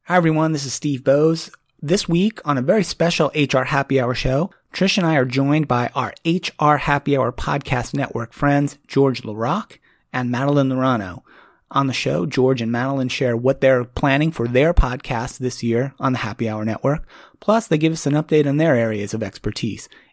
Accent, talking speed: American, 195 wpm